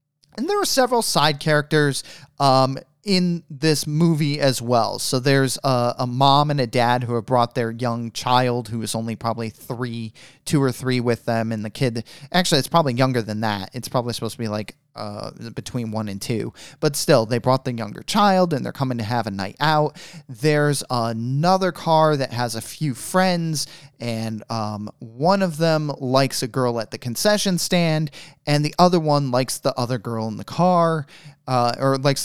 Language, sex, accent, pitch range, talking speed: English, male, American, 120-160 Hz, 195 wpm